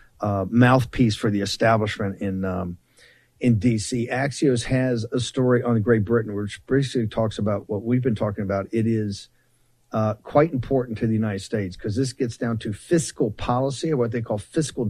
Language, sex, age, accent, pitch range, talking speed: English, male, 50-69, American, 105-120 Hz, 185 wpm